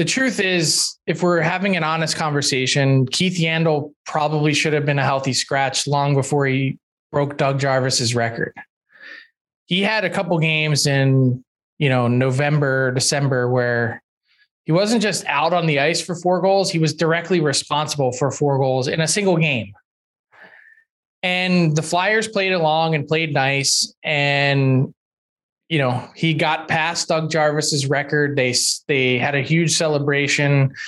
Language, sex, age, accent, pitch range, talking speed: English, male, 20-39, American, 140-170 Hz, 155 wpm